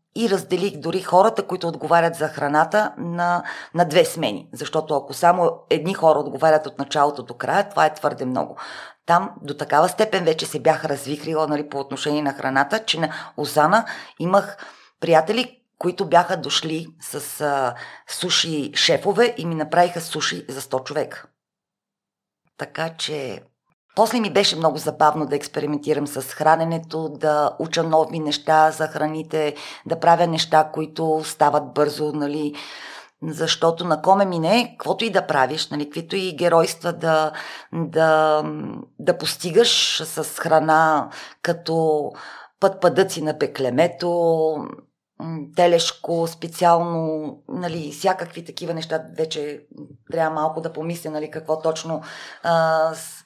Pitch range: 150-170 Hz